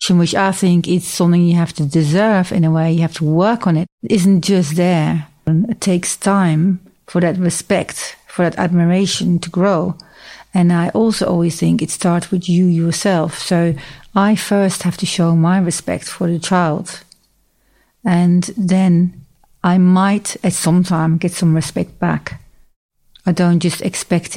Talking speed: 170 wpm